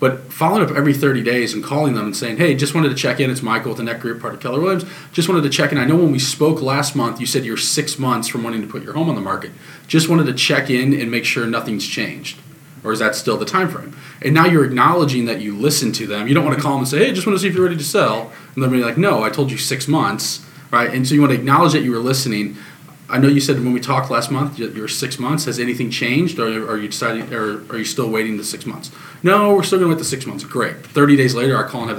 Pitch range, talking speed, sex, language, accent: 115-150 Hz, 300 wpm, male, English, American